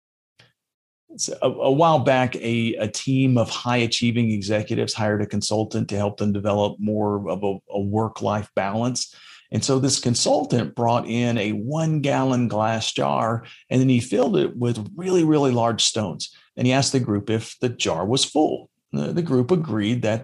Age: 40-59